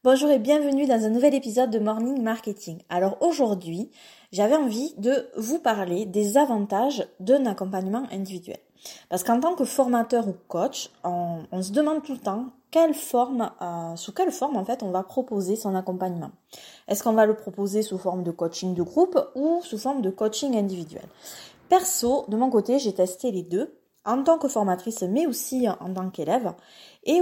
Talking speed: 185 wpm